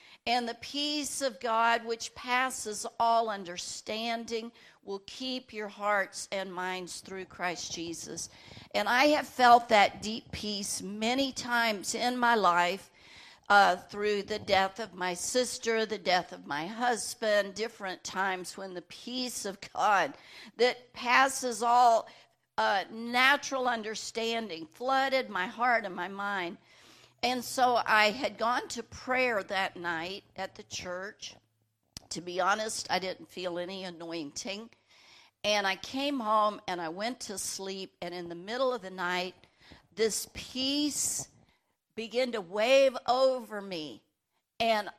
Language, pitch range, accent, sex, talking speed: English, 190-245 Hz, American, female, 140 wpm